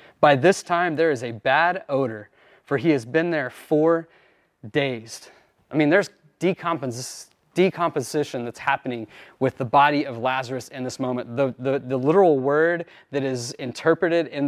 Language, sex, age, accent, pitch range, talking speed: English, male, 30-49, American, 130-165 Hz, 160 wpm